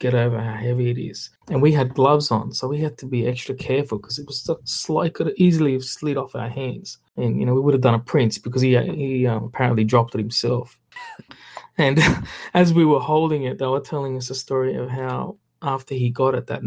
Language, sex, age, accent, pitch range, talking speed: English, male, 20-39, Australian, 120-150 Hz, 240 wpm